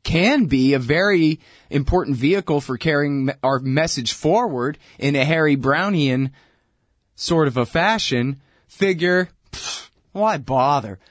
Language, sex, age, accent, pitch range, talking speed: English, male, 30-49, American, 135-180 Hz, 125 wpm